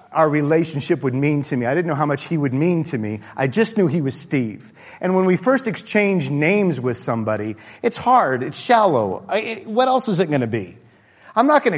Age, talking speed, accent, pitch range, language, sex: 40-59, 220 wpm, American, 120-190 Hz, English, male